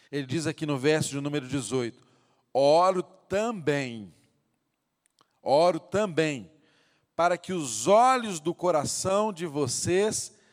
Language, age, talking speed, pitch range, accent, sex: Portuguese, 40-59, 115 wpm, 160-215 Hz, Brazilian, male